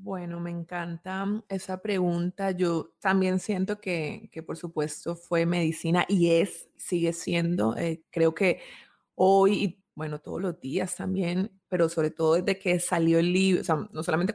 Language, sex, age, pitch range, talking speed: Spanish, female, 20-39, 165-185 Hz, 165 wpm